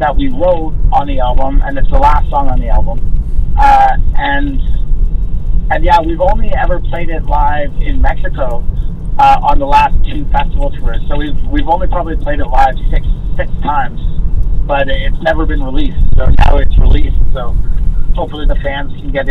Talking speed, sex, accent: 185 wpm, male, American